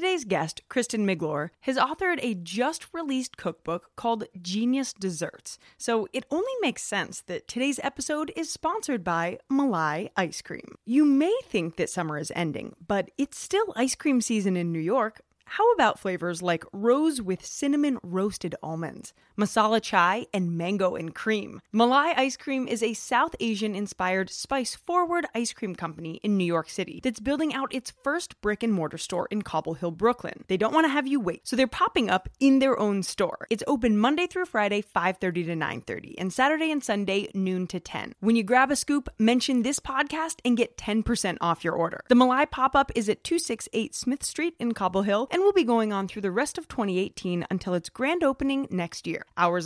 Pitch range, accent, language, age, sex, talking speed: 190-280 Hz, American, English, 20-39, female, 195 wpm